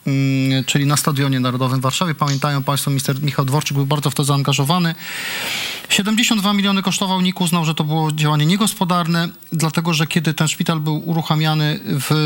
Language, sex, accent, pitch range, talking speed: English, male, Polish, 145-180 Hz, 165 wpm